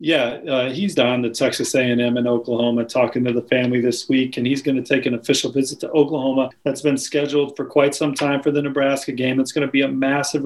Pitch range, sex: 140-160 Hz, male